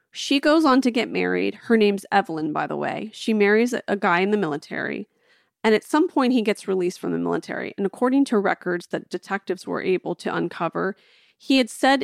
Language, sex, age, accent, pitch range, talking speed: English, female, 30-49, American, 185-235 Hz, 215 wpm